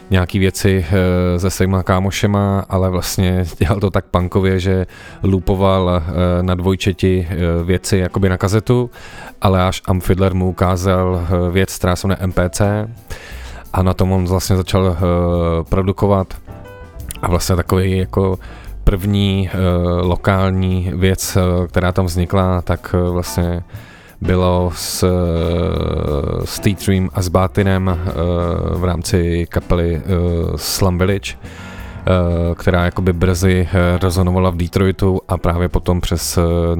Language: Czech